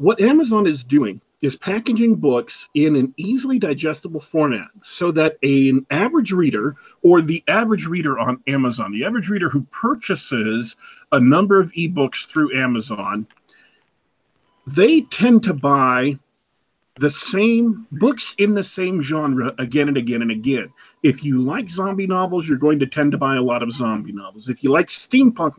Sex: male